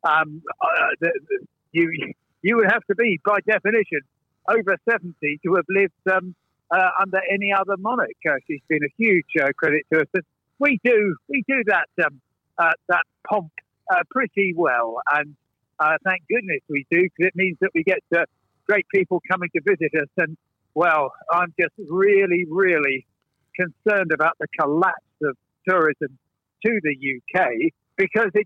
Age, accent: 50-69, British